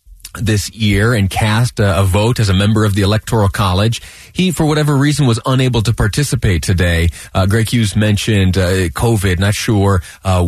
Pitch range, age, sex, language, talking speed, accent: 100-130 Hz, 30-49, male, English, 180 wpm, American